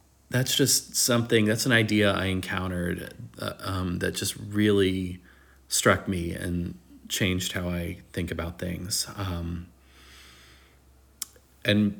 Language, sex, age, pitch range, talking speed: English, male, 30-49, 90-105 Hz, 120 wpm